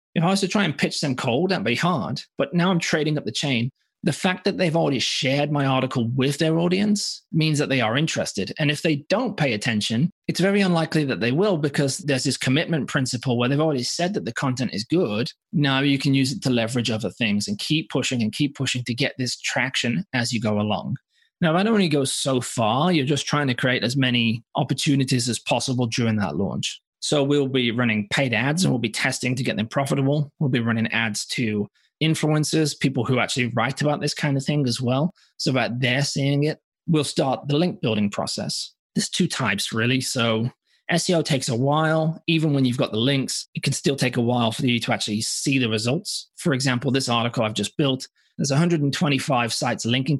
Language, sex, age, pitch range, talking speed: English, male, 30-49, 125-160 Hz, 220 wpm